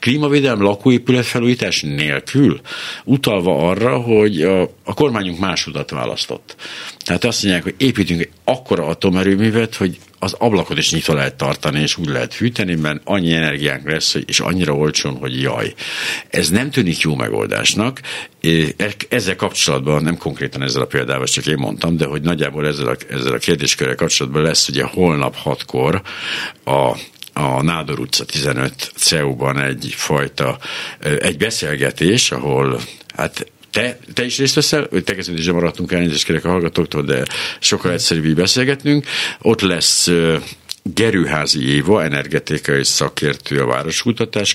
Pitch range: 75-105 Hz